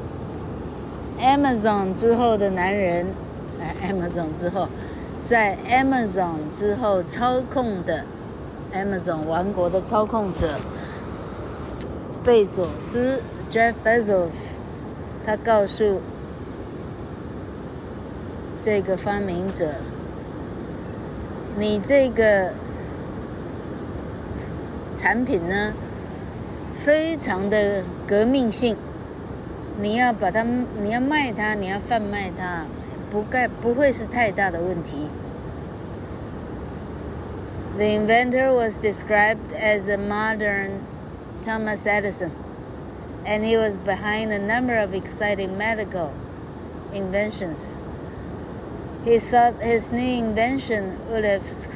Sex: female